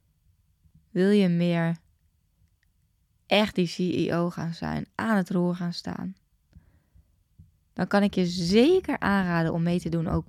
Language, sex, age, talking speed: Dutch, female, 20-39, 140 wpm